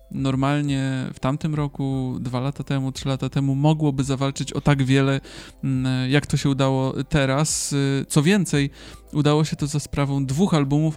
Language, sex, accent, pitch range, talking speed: Polish, male, native, 135-150 Hz, 160 wpm